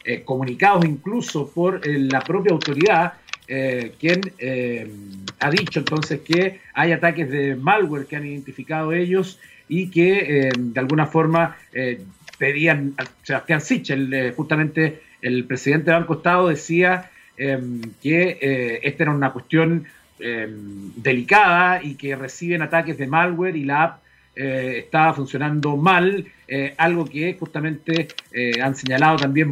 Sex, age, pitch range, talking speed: male, 50-69, 140-180 Hz, 140 wpm